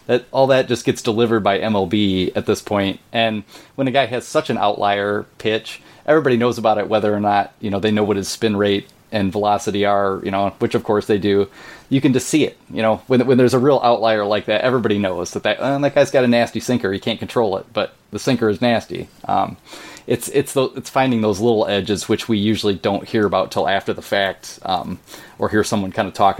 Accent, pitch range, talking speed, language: American, 100-125 Hz, 240 wpm, English